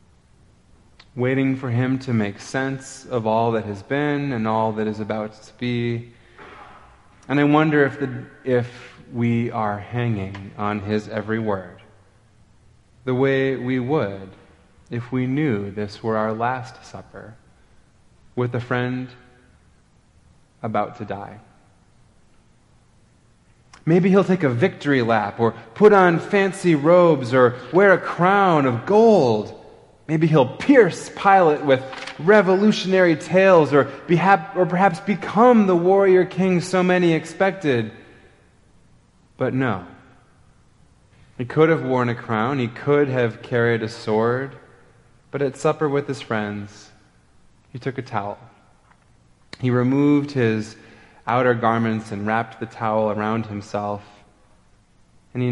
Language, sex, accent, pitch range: English, male, American, 110-145 Hz